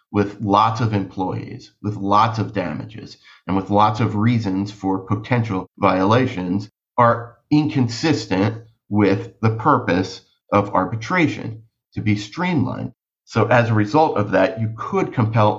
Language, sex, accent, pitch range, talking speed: English, male, American, 100-120 Hz, 135 wpm